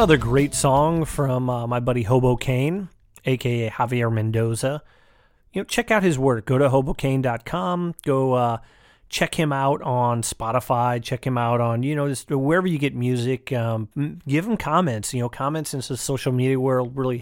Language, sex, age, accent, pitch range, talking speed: English, male, 30-49, American, 115-140 Hz, 180 wpm